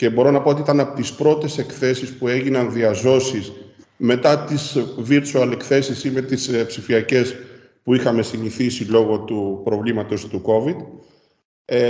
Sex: male